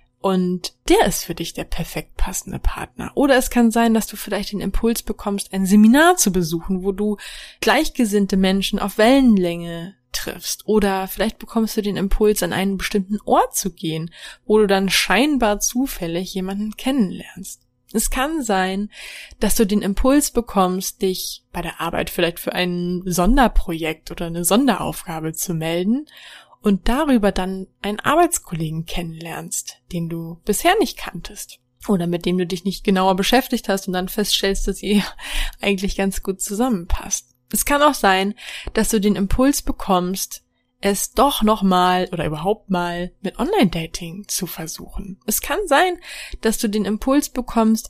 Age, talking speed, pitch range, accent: 20-39, 160 wpm, 180-225 Hz, German